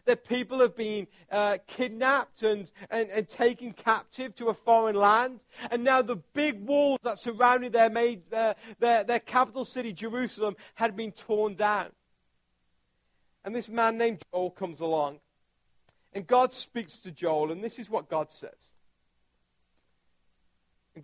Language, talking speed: English, 150 wpm